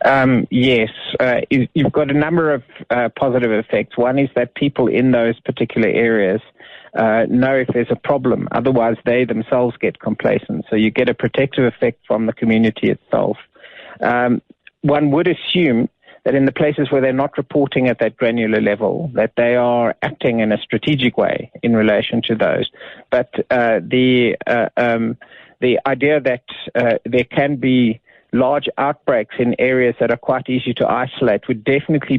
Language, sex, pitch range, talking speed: English, male, 115-135 Hz, 170 wpm